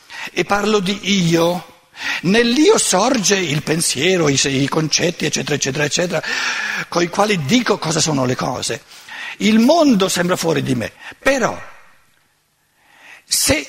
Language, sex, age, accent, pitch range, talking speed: Italian, male, 60-79, native, 145-225 Hz, 130 wpm